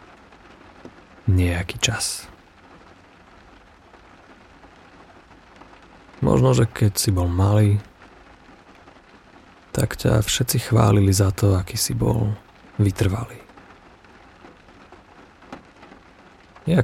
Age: 40-59